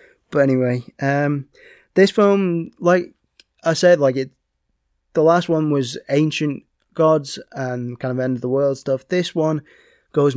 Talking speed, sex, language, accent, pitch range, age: 155 wpm, male, English, British, 130-155 Hz, 20-39